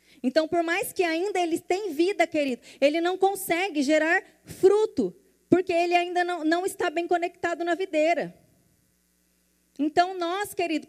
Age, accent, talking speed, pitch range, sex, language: 20-39, Brazilian, 150 wpm, 310-360 Hz, female, Portuguese